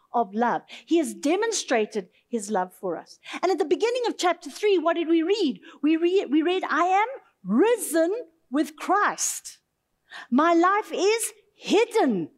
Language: English